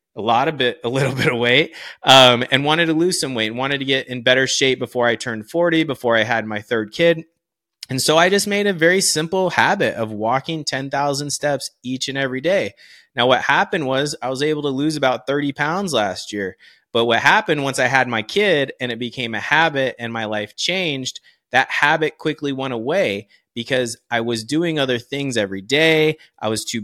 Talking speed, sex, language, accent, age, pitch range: 215 wpm, male, English, American, 30-49, 115-155 Hz